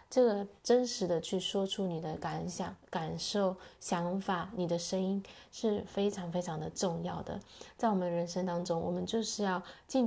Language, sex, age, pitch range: Chinese, female, 20-39, 175-210 Hz